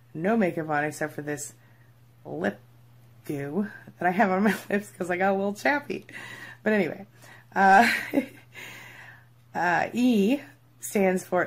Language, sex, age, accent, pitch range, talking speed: English, female, 30-49, American, 150-180 Hz, 140 wpm